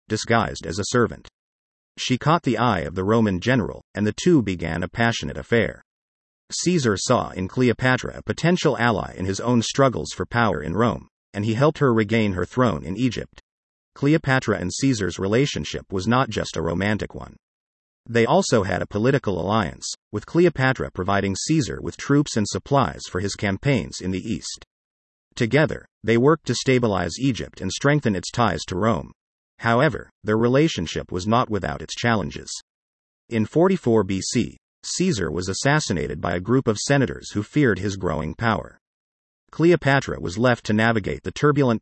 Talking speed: 165 wpm